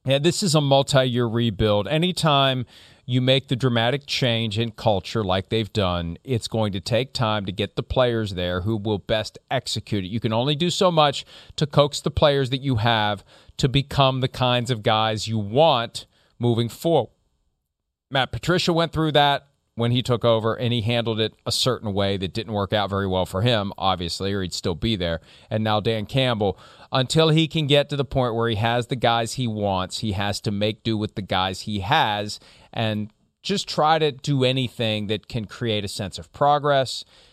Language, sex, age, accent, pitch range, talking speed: English, male, 40-59, American, 105-135 Hz, 205 wpm